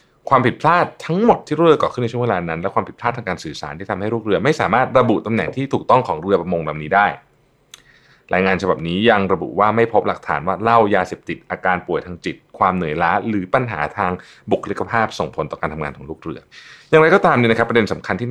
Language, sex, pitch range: Thai, male, 85-125 Hz